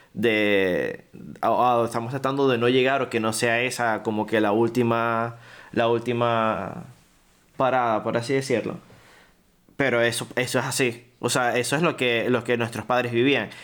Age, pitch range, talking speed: 20-39, 120-140 Hz, 170 wpm